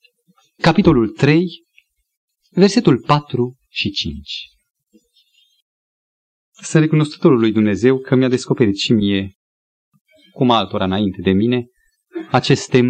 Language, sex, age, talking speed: Romanian, male, 40-59, 100 wpm